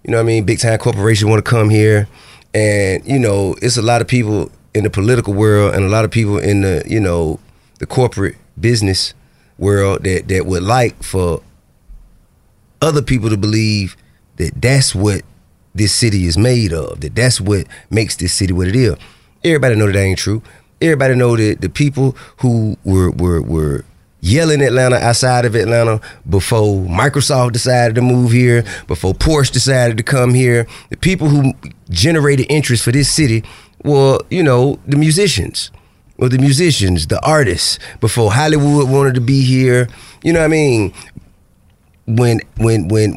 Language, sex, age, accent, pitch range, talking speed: English, male, 30-49, American, 100-130 Hz, 175 wpm